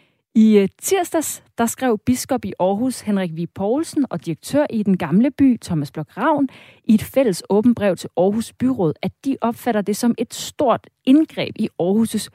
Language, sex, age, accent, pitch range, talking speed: Danish, female, 30-49, native, 170-245 Hz, 170 wpm